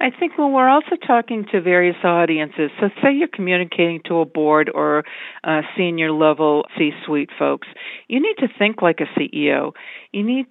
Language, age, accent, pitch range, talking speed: English, 50-69, American, 160-200 Hz, 165 wpm